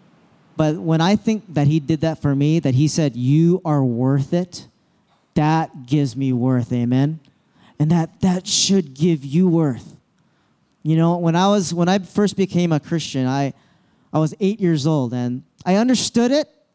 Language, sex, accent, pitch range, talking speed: English, male, American, 140-190 Hz, 180 wpm